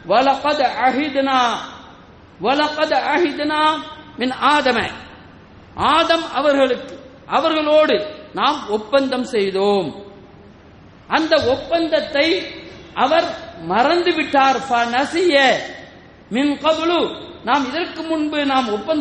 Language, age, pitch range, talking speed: English, 50-69, 250-320 Hz, 100 wpm